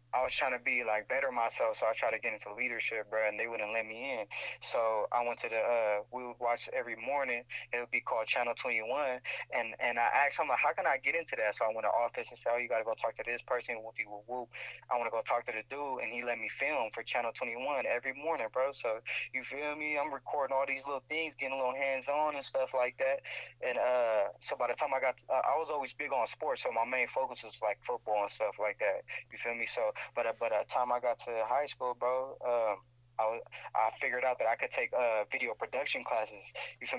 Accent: American